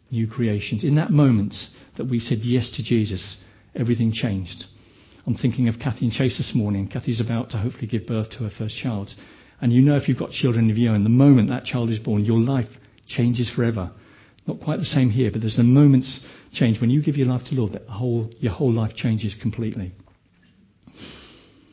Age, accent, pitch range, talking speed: 50-69, British, 110-130 Hz, 215 wpm